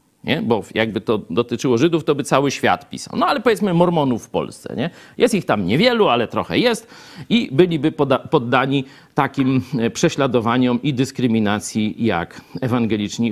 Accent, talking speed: native, 160 wpm